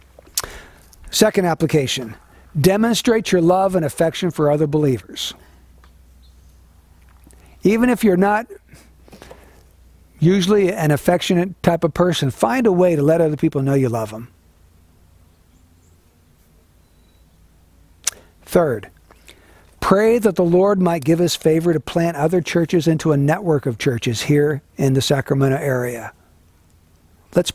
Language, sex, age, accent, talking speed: English, male, 60-79, American, 120 wpm